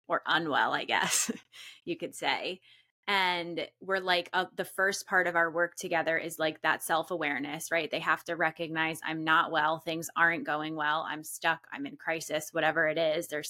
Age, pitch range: 20-39, 165-190 Hz